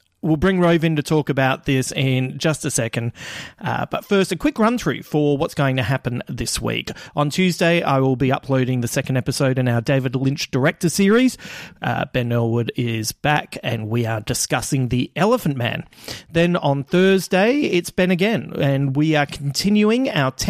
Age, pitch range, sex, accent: 40-59, 130-185 Hz, male, Australian